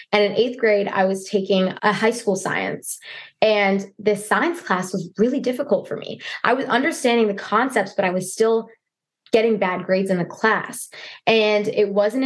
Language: English